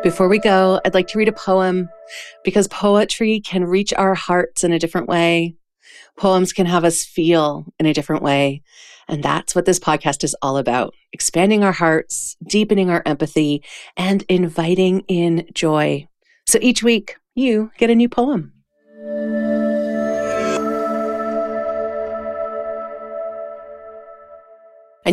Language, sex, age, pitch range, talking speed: English, female, 40-59, 140-185 Hz, 130 wpm